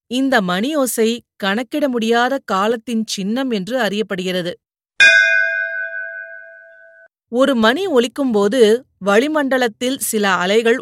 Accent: native